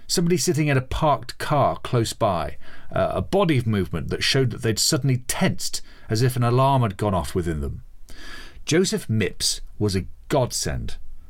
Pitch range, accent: 90-125 Hz, British